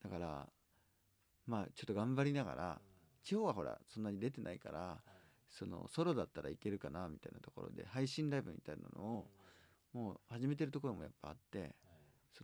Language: Japanese